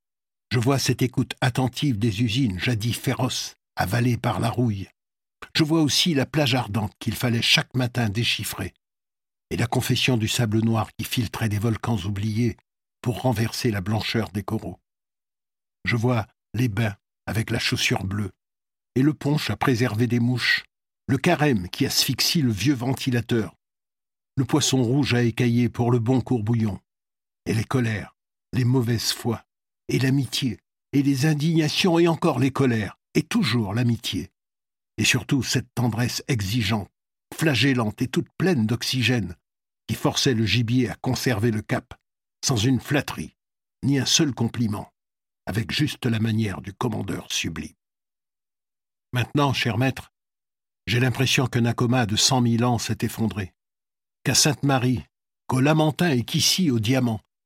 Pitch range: 110-130 Hz